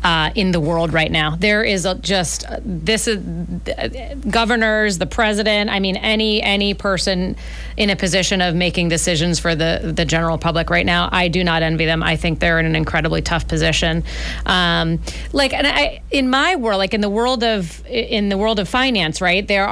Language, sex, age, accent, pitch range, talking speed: English, female, 30-49, American, 170-205 Hz, 190 wpm